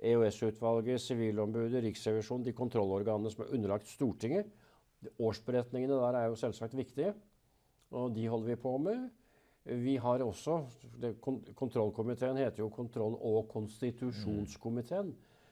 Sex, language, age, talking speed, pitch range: male, English, 50-69, 125 wpm, 110-135 Hz